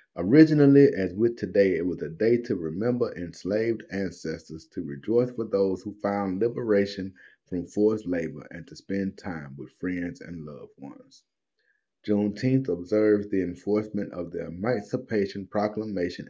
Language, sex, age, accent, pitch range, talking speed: English, male, 30-49, American, 95-115 Hz, 145 wpm